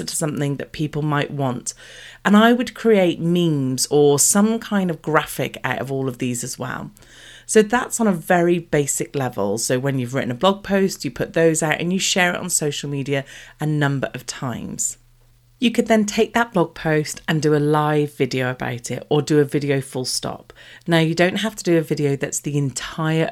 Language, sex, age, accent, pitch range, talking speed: English, female, 40-59, British, 135-175 Hz, 215 wpm